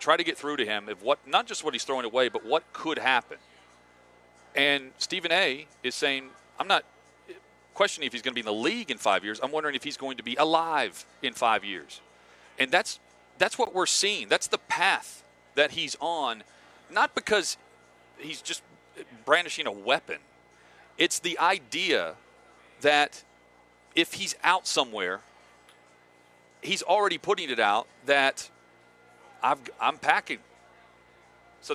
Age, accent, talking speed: 40-59, American, 160 wpm